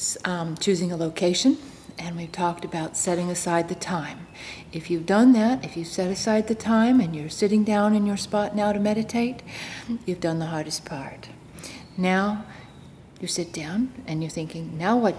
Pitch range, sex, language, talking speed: 170-215 Hz, female, English, 180 wpm